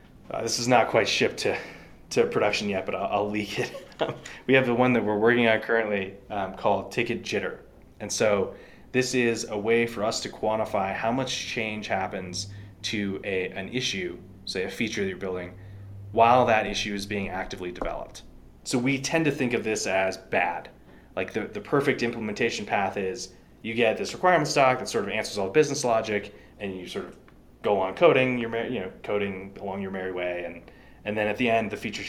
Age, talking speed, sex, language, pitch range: 20-39, 205 wpm, male, English, 95-120 Hz